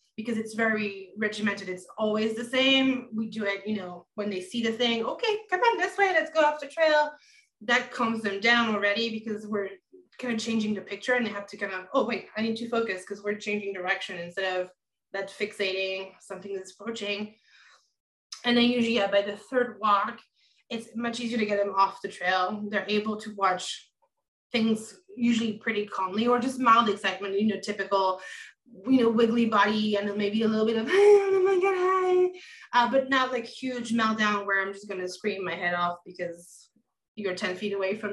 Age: 20-39